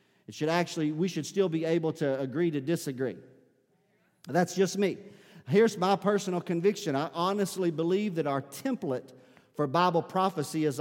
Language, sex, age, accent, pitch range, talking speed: English, male, 50-69, American, 145-190 Hz, 160 wpm